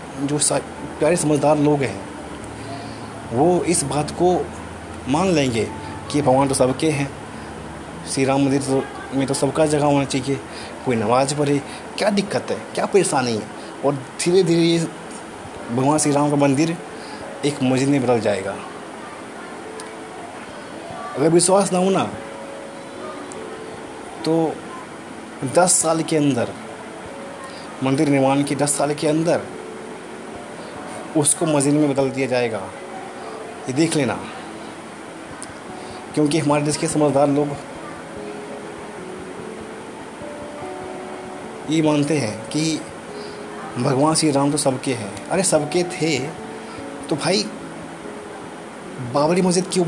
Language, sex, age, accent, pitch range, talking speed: Hindi, male, 20-39, native, 135-165 Hz, 120 wpm